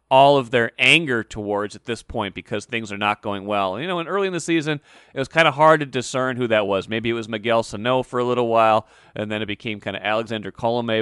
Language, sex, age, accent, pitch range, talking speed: English, male, 30-49, American, 110-135 Hz, 265 wpm